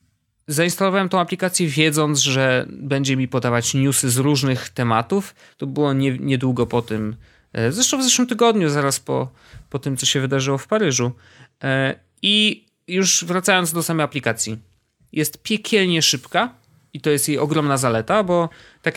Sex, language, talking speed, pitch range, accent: male, Polish, 150 wpm, 120-155 Hz, native